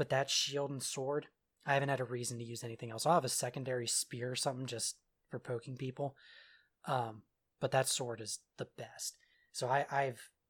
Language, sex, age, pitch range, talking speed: English, male, 20-39, 120-140 Hz, 200 wpm